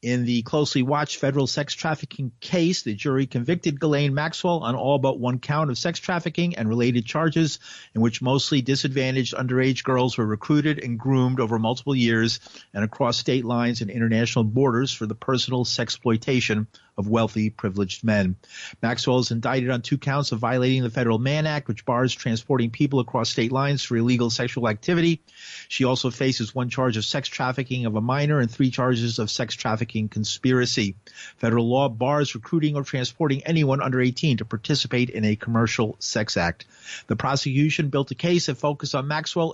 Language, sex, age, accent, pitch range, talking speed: English, male, 50-69, American, 115-145 Hz, 180 wpm